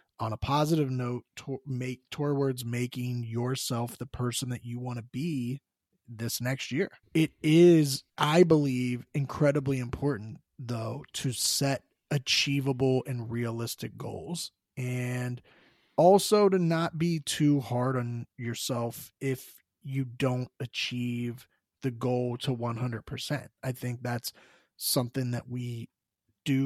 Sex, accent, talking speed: male, American, 120 wpm